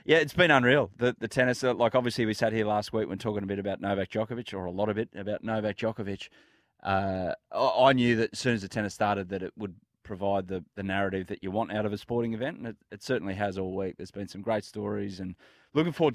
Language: English